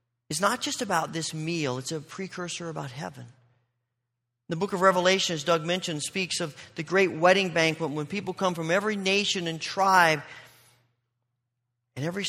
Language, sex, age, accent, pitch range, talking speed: English, male, 40-59, American, 120-180 Hz, 165 wpm